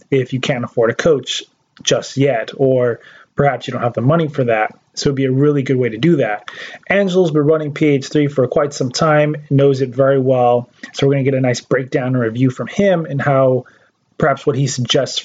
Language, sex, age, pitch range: English, male, 20-39, 130-155 Hz